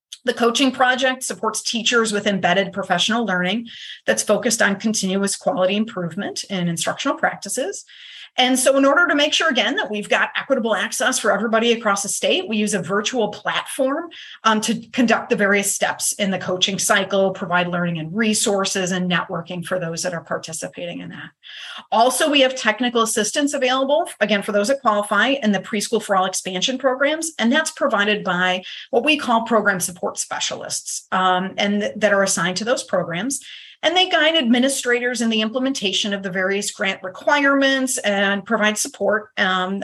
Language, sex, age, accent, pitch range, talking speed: English, female, 30-49, American, 190-255 Hz, 175 wpm